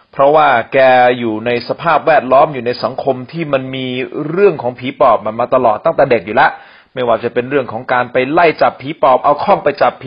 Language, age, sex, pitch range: Thai, 30-49, male, 125-170 Hz